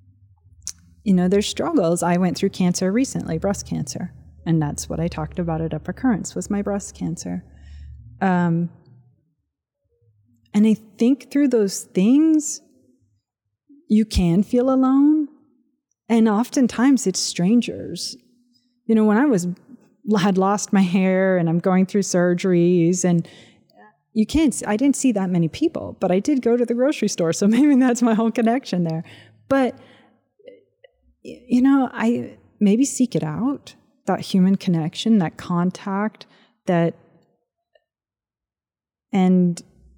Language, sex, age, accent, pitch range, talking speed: English, female, 30-49, American, 170-235 Hz, 135 wpm